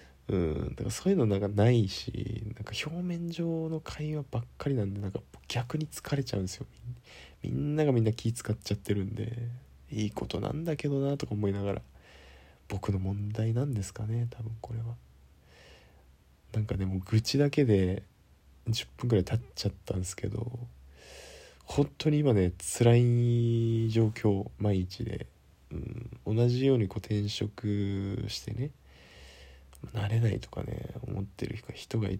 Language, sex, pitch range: Japanese, male, 95-120 Hz